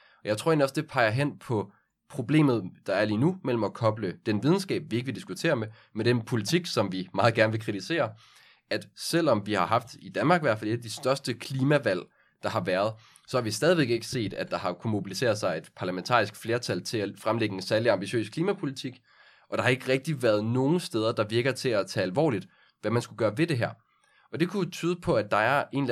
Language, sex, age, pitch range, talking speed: Danish, male, 20-39, 110-140 Hz, 240 wpm